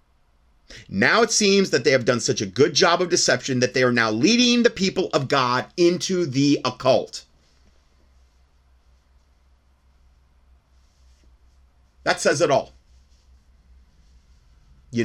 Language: English